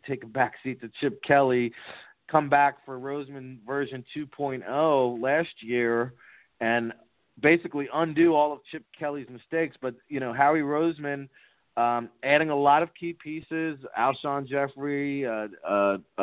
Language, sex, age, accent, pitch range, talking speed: English, male, 30-49, American, 125-145 Hz, 140 wpm